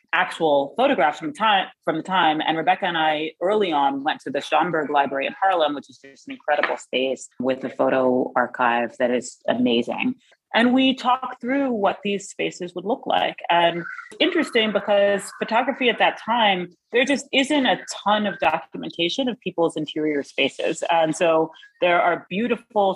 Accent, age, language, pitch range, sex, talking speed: American, 30-49, English, 150-225 Hz, female, 175 wpm